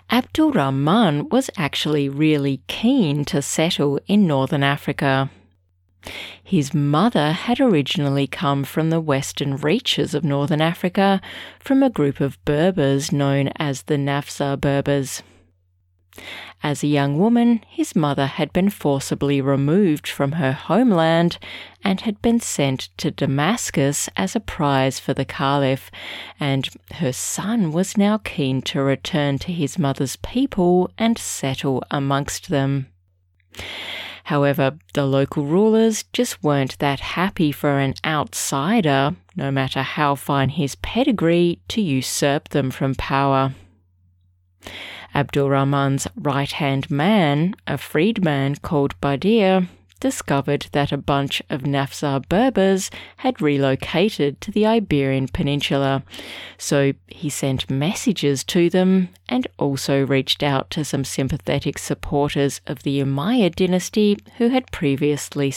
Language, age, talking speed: English, 30-49, 125 wpm